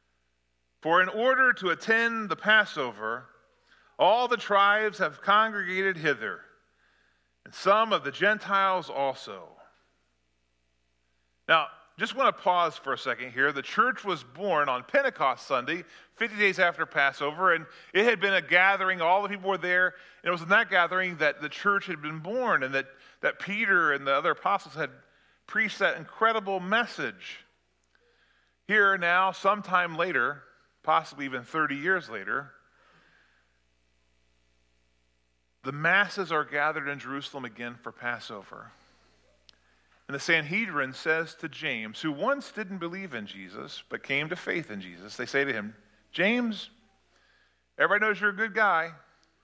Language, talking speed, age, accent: English, 150 wpm, 40-59, American